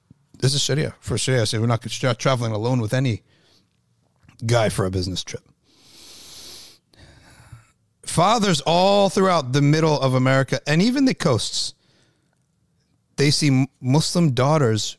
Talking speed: 130 wpm